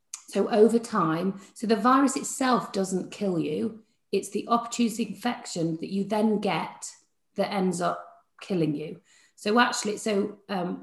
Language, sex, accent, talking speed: English, female, British, 150 wpm